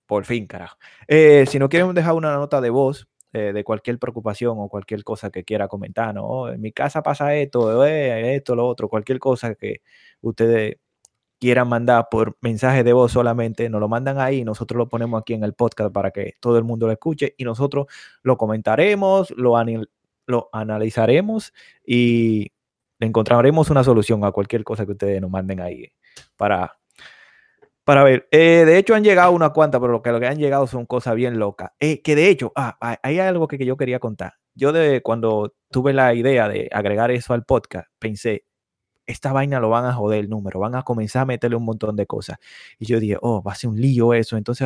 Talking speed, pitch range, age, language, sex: 205 wpm, 110-145 Hz, 20-39, Spanish, male